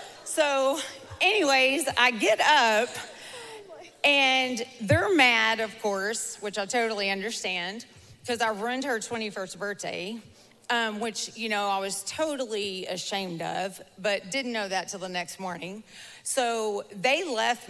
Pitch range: 190-240 Hz